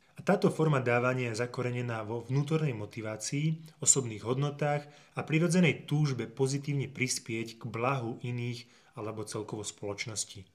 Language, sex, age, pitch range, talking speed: Slovak, male, 20-39, 115-145 Hz, 125 wpm